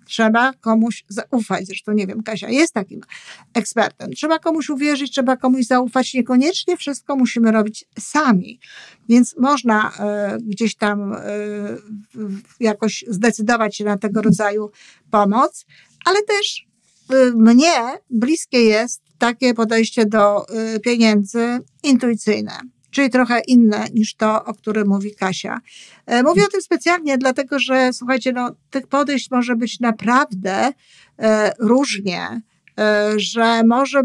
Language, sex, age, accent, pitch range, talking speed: Polish, female, 50-69, native, 210-255 Hz, 120 wpm